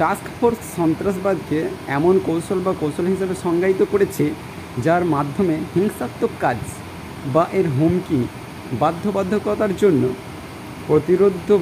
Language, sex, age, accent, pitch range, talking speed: Bengali, male, 50-69, native, 150-195 Hz, 105 wpm